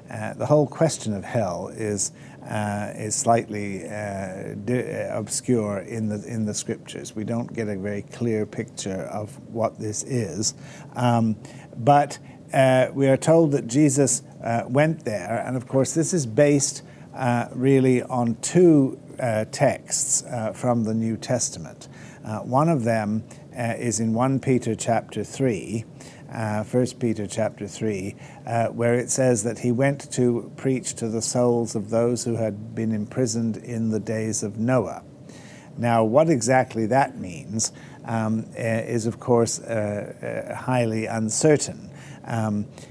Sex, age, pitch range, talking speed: male, 60-79, 110-140 Hz, 155 wpm